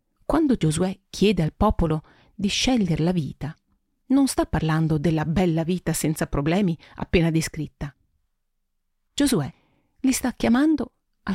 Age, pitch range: 40-59, 160-210 Hz